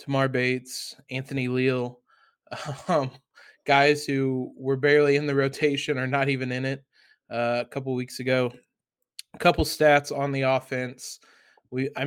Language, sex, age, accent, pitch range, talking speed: English, male, 20-39, American, 130-155 Hz, 145 wpm